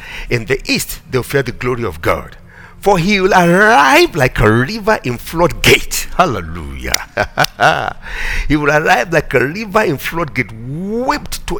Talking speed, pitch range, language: 150 wpm, 125-205 Hz, English